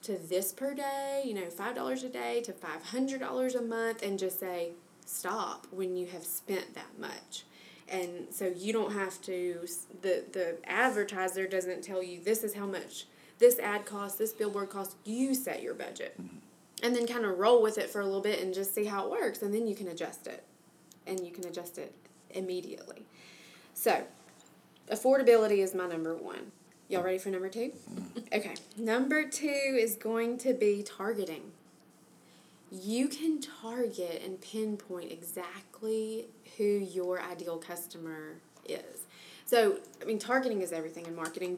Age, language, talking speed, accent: 20-39, English, 165 wpm, American